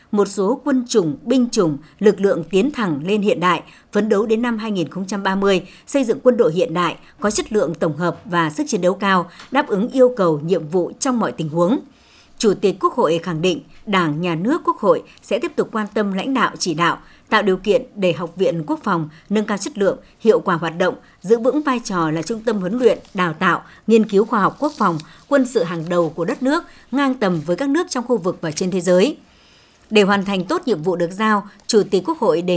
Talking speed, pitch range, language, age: 240 wpm, 175-240 Hz, Vietnamese, 60-79